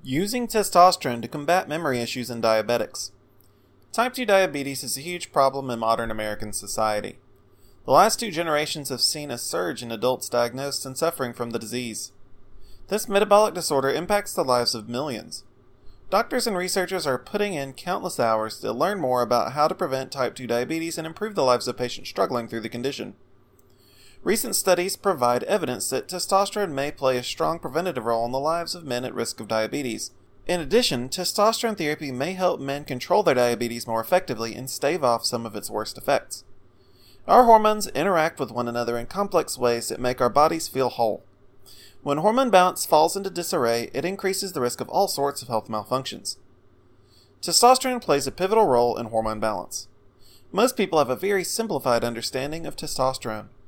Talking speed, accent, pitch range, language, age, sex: 180 wpm, American, 115-175 Hz, English, 30-49, male